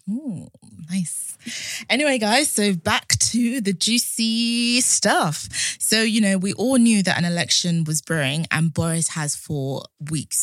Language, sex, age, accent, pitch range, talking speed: English, female, 20-39, British, 140-200 Hz, 150 wpm